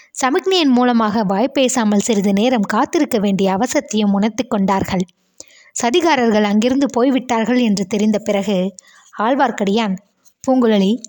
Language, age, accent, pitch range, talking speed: Tamil, 20-39, native, 205-260 Hz, 95 wpm